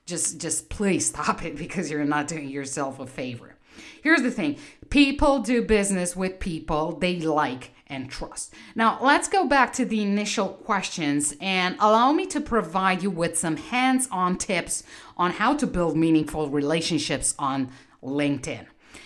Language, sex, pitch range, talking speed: English, female, 155-235 Hz, 155 wpm